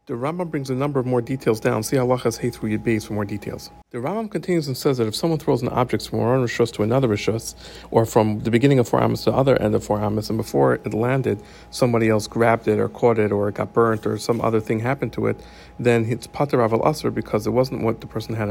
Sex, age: male, 50-69